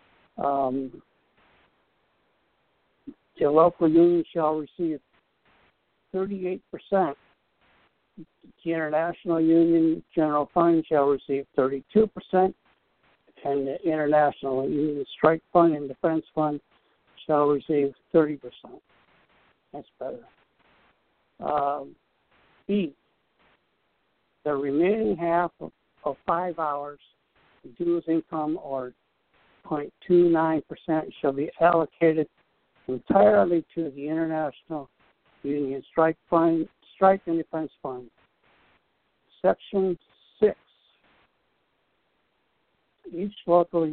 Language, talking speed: English, 85 wpm